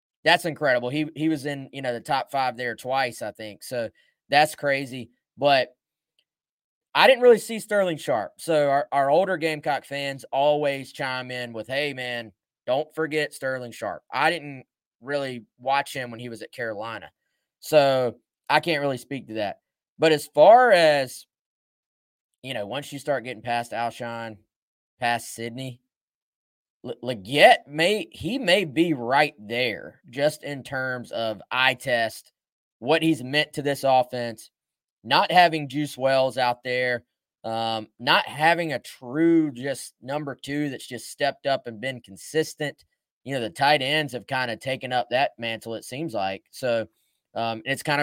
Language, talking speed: English, 165 wpm